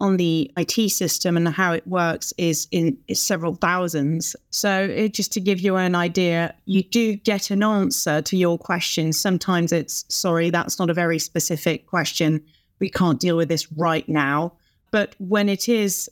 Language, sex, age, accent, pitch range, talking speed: English, female, 30-49, British, 160-190 Hz, 175 wpm